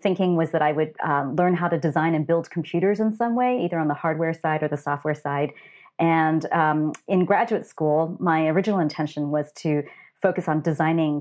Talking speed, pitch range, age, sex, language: 205 wpm, 155-195 Hz, 30-49, female, English